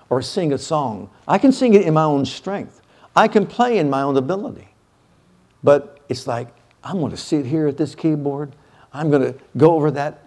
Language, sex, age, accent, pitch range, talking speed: English, male, 50-69, American, 120-155 Hz, 210 wpm